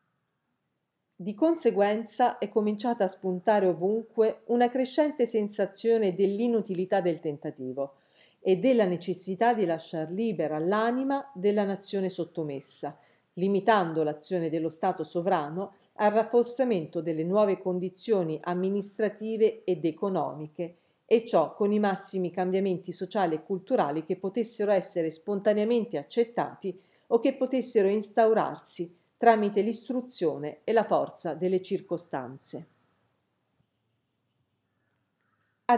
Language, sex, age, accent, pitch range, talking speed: Italian, female, 40-59, native, 160-220 Hz, 105 wpm